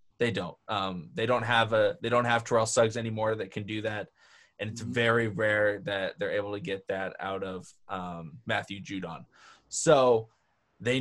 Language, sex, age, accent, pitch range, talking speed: English, male, 20-39, American, 105-140 Hz, 185 wpm